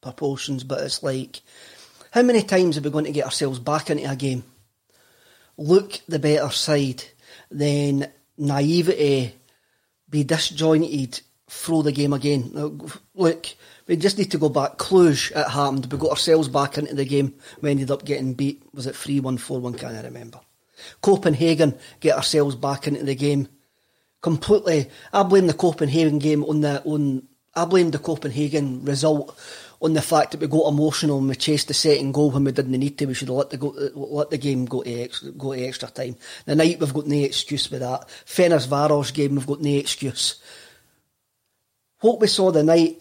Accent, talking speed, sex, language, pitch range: British, 180 wpm, male, English, 135-155 Hz